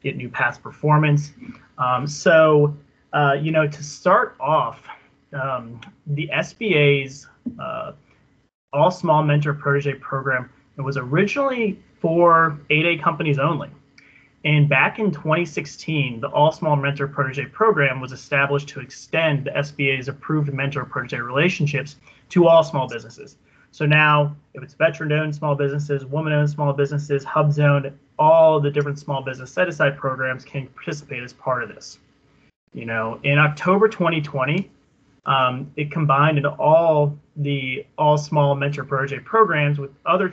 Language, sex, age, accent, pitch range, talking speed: English, male, 30-49, American, 140-155 Hz, 140 wpm